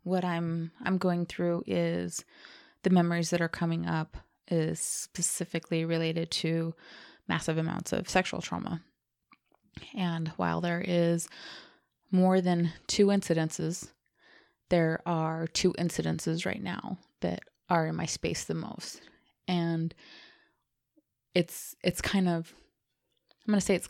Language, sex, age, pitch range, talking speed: English, female, 20-39, 165-185 Hz, 130 wpm